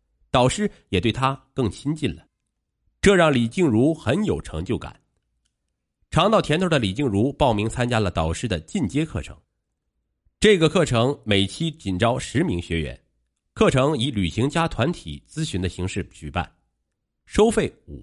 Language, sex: Chinese, male